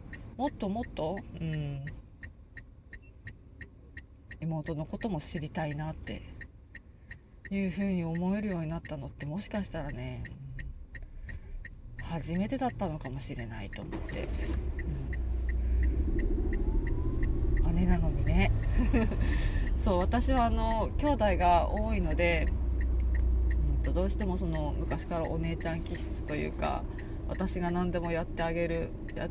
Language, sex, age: Japanese, female, 20-39